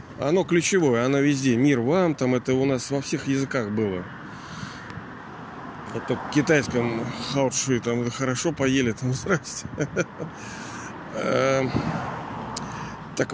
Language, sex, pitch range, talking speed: Russian, male, 120-150 Hz, 110 wpm